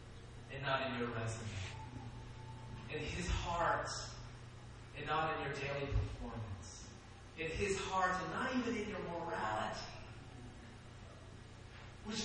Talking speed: 120 wpm